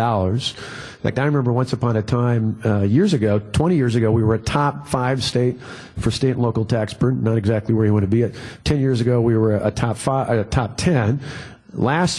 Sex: male